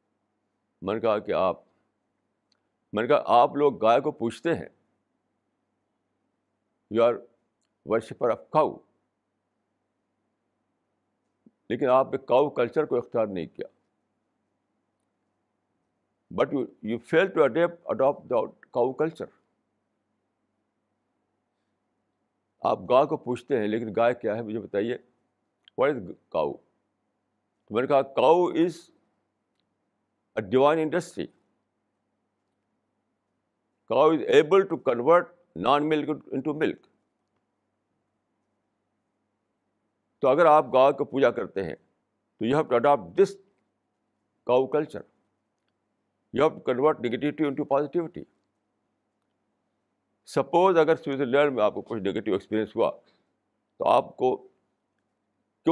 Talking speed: 95 wpm